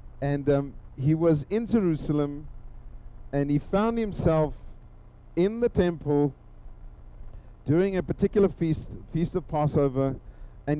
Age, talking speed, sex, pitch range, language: 50-69, 115 wpm, male, 110-165 Hz, English